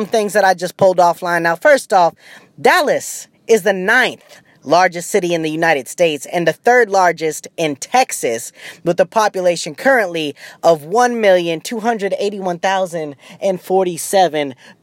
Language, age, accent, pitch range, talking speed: English, 20-39, American, 160-215 Hz, 125 wpm